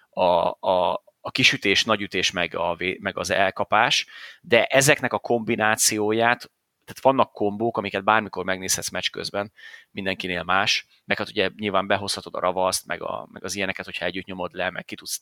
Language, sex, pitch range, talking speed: Hungarian, male, 95-120 Hz, 180 wpm